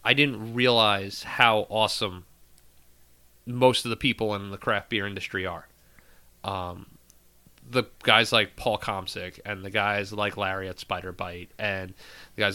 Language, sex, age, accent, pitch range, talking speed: English, male, 30-49, American, 100-125 Hz, 155 wpm